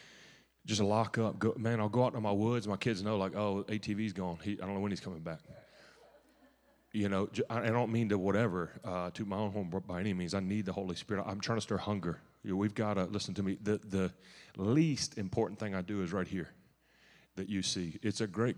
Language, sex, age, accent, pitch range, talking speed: English, male, 30-49, American, 95-110 Hz, 245 wpm